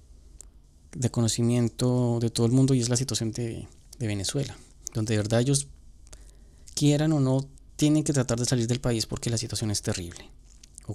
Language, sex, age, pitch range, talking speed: Spanish, male, 30-49, 85-125 Hz, 180 wpm